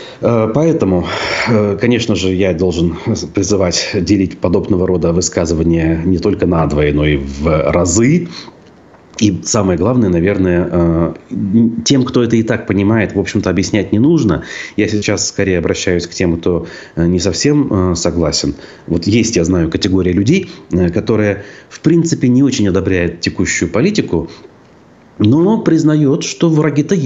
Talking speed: 135 wpm